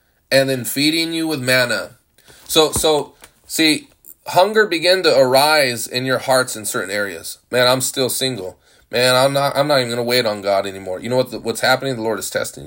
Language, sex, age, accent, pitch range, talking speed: English, male, 20-39, American, 110-135 Hz, 210 wpm